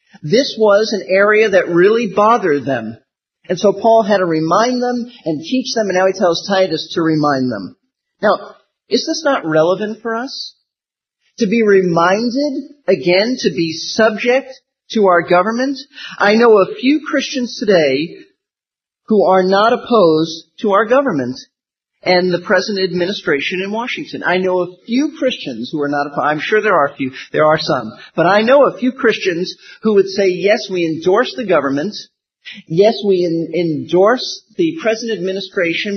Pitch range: 170-225 Hz